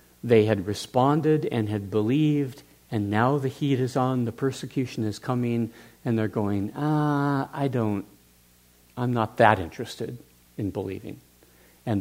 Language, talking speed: English, 145 wpm